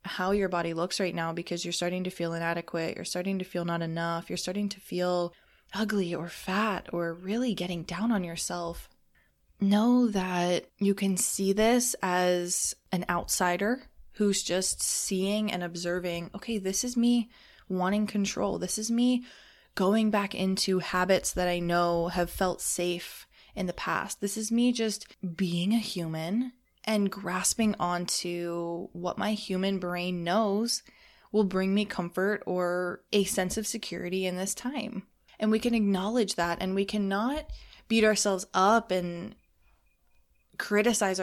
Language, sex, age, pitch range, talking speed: English, female, 20-39, 175-215 Hz, 155 wpm